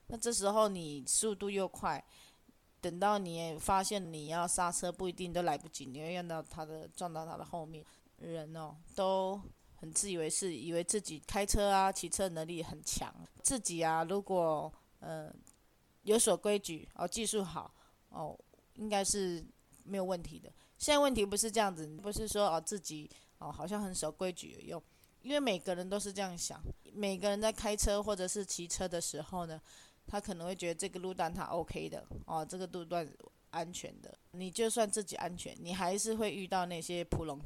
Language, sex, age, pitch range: Chinese, female, 20-39, 165-205 Hz